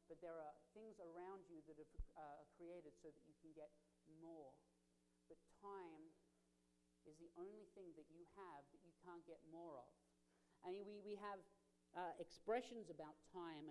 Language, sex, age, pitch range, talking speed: English, male, 40-59, 140-195 Hz, 175 wpm